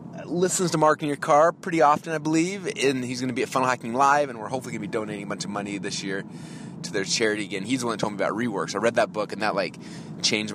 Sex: male